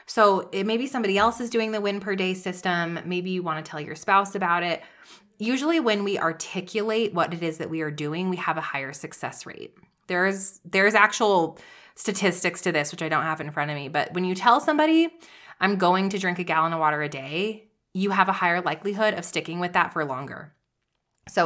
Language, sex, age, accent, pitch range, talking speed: English, female, 20-39, American, 165-215 Hz, 220 wpm